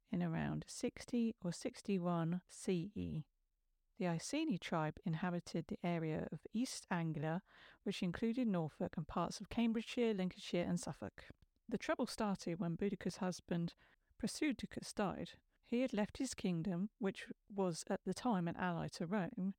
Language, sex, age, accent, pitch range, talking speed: English, female, 50-69, British, 175-215 Hz, 140 wpm